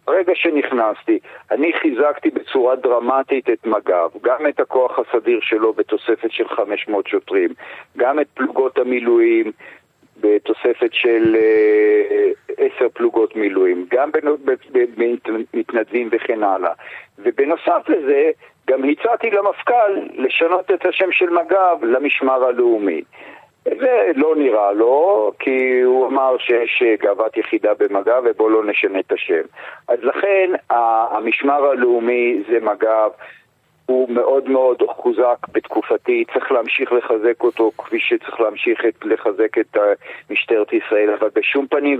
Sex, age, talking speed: male, 50-69, 120 wpm